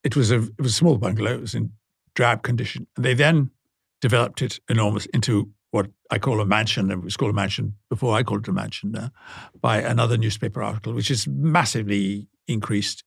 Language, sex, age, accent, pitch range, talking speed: English, male, 60-79, British, 105-130 Hz, 205 wpm